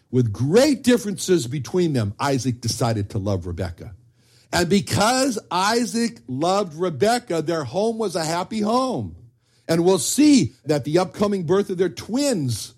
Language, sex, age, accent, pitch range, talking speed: English, male, 60-79, American, 130-215 Hz, 145 wpm